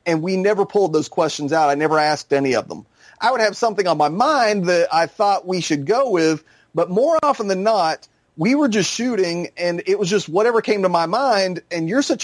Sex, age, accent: male, 30-49, American